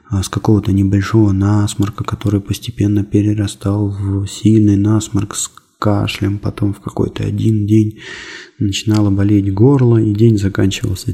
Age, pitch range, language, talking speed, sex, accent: 20-39, 100-115 Hz, Russian, 125 wpm, male, native